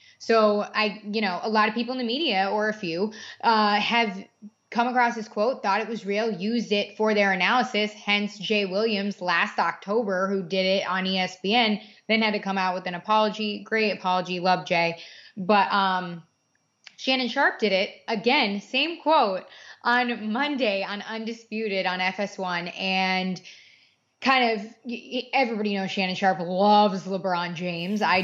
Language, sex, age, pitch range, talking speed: English, female, 20-39, 190-235 Hz, 165 wpm